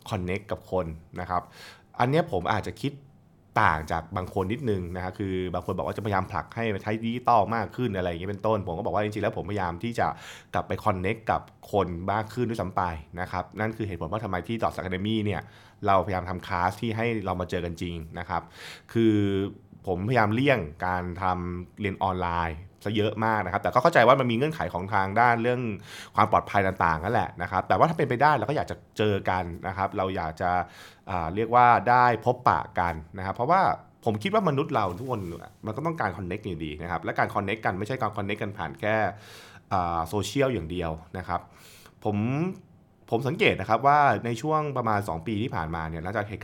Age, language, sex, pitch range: 20-39, Thai, male, 90-115 Hz